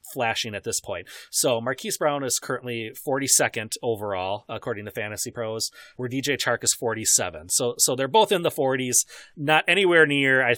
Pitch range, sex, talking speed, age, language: 115-140 Hz, male, 175 wpm, 30-49, English